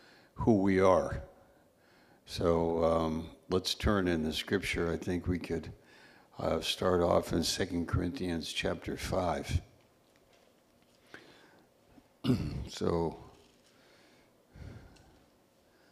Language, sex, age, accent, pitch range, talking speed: English, male, 60-79, American, 85-100 Hz, 85 wpm